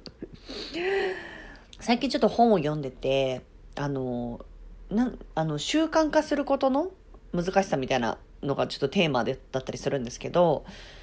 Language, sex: Japanese, female